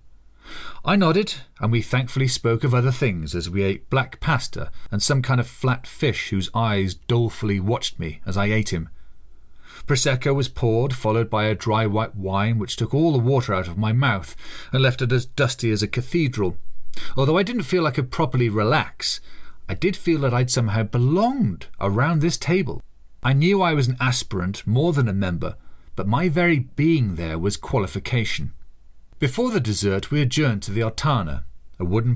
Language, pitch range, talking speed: English, 100-135 Hz, 185 wpm